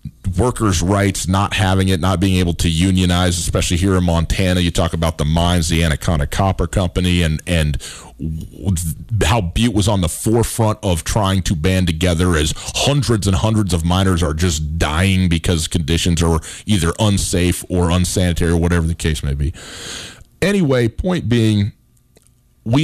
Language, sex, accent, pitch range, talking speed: English, male, American, 85-110 Hz, 165 wpm